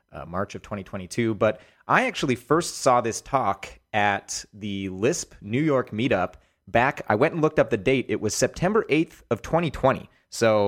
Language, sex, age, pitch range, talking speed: English, male, 30-49, 100-130 Hz, 180 wpm